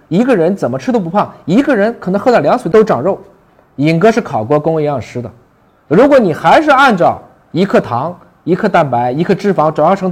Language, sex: Chinese, male